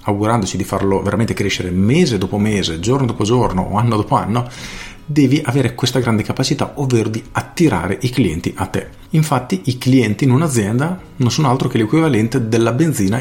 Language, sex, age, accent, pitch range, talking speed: Italian, male, 40-59, native, 100-125 Hz, 175 wpm